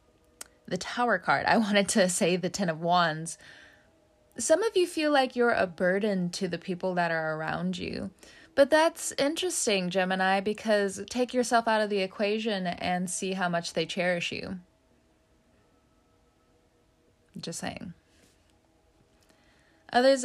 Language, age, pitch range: English, 20-39, 175-230 Hz